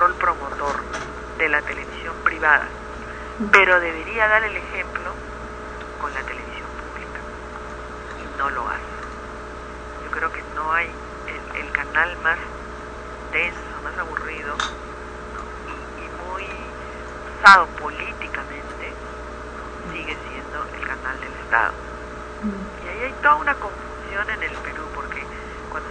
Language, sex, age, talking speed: Spanish, female, 50-69, 125 wpm